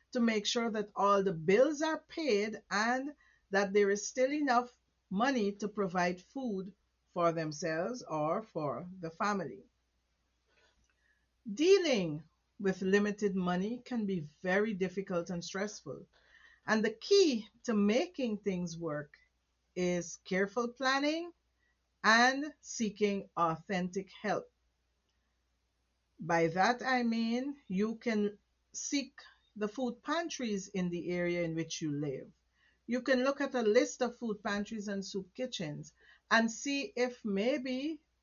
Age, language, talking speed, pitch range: 50-69, English, 130 wpm, 170-230 Hz